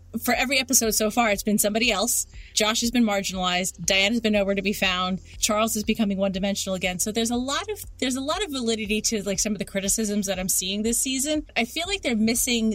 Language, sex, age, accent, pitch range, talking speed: English, female, 30-49, American, 185-235 Hz, 245 wpm